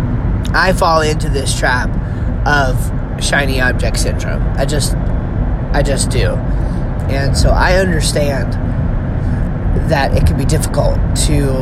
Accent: American